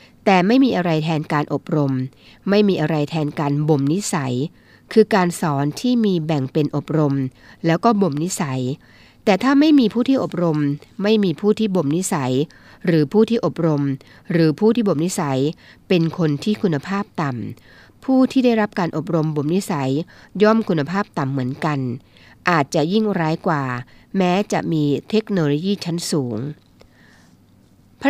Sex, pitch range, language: female, 145-195 Hz, Thai